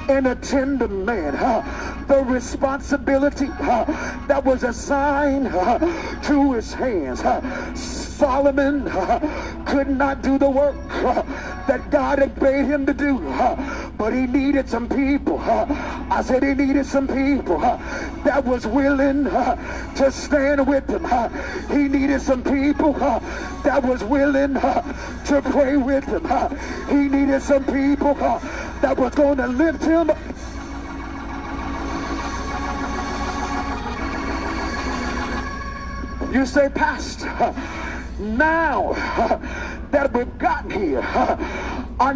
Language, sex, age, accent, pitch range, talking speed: English, male, 50-69, American, 265-285 Hz, 125 wpm